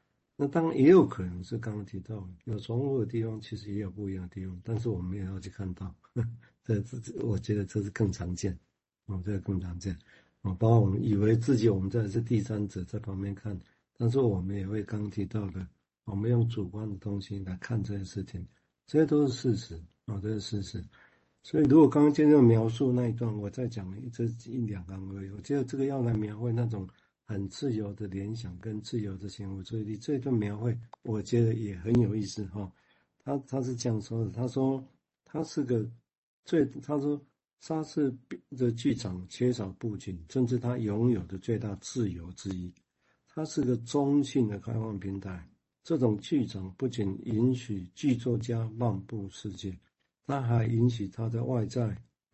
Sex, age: male, 60-79